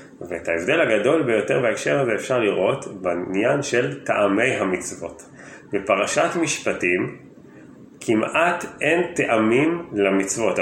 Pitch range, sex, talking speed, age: 100-130 Hz, male, 95 wpm, 30-49